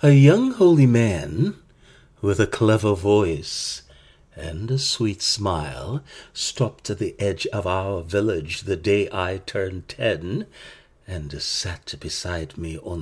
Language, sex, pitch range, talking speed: English, male, 90-135 Hz, 135 wpm